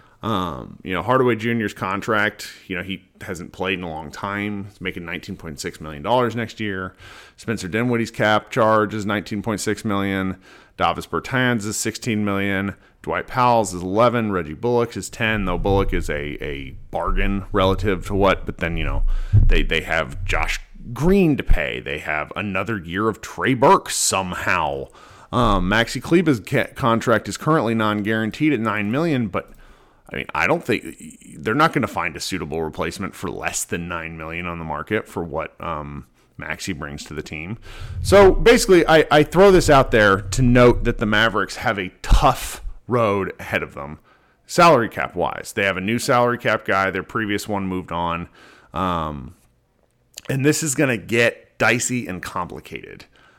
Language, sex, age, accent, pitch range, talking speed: English, male, 30-49, American, 90-115 Hz, 180 wpm